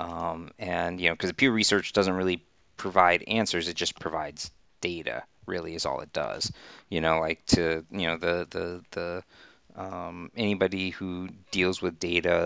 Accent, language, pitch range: American, English, 85-95 Hz